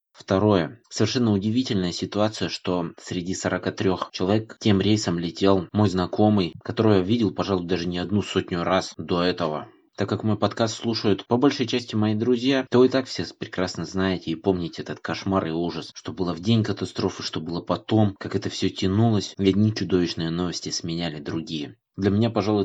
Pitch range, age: 90-105 Hz, 20-39